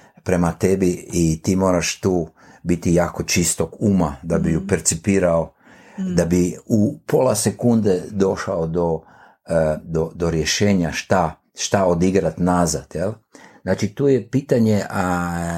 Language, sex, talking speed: Croatian, male, 125 wpm